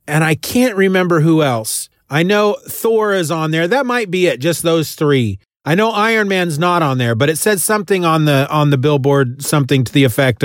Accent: American